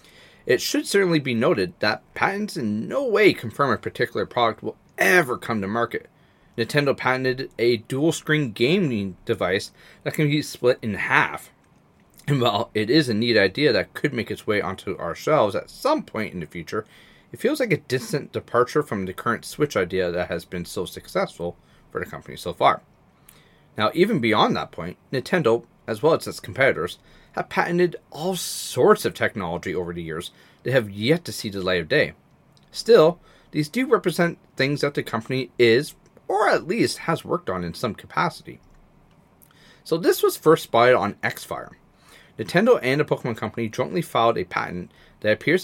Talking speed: 185 wpm